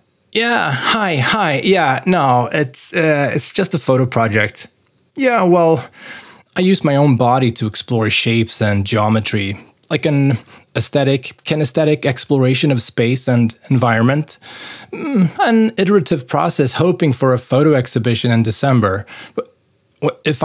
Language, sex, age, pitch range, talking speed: English, male, 20-39, 110-150 Hz, 135 wpm